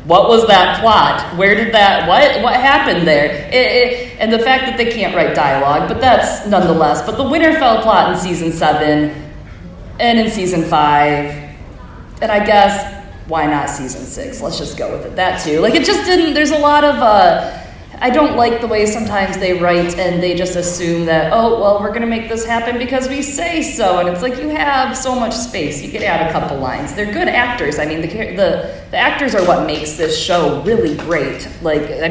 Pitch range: 155-225 Hz